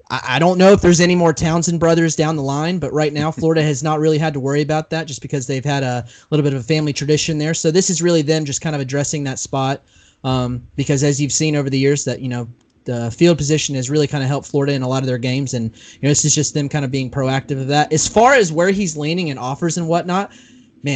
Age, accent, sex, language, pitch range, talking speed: 20-39, American, male, English, 135-165 Hz, 280 wpm